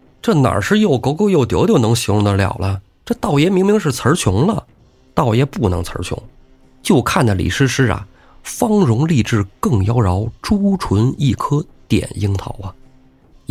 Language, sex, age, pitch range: Chinese, male, 20-39, 100-145 Hz